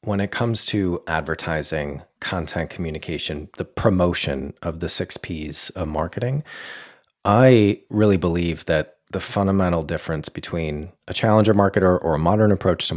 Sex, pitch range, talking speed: male, 80-100 Hz, 145 wpm